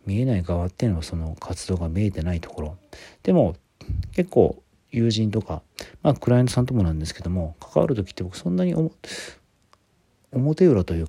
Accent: native